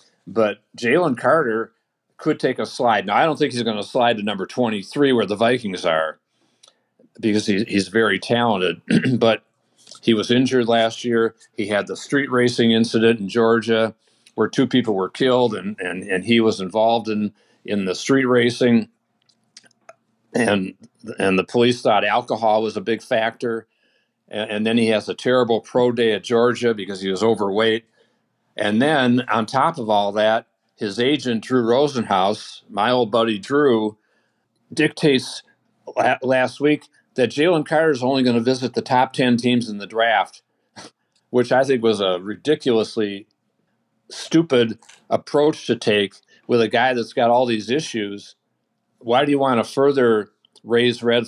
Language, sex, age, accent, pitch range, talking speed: English, male, 50-69, American, 110-125 Hz, 165 wpm